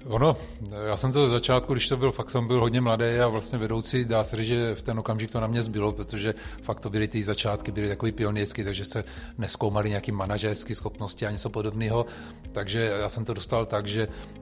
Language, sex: Czech, male